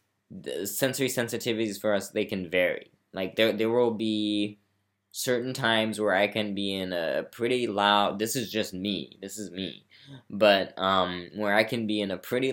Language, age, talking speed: English, 10-29, 180 wpm